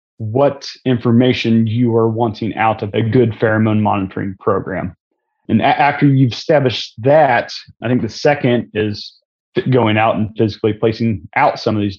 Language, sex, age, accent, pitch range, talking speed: English, male, 30-49, American, 110-125 Hz, 165 wpm